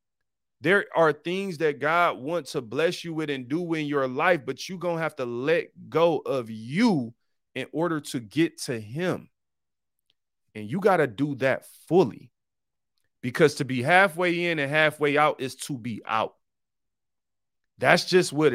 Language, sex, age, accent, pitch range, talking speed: English, male, 30-49, American, 130-160 Hz, 170 wpm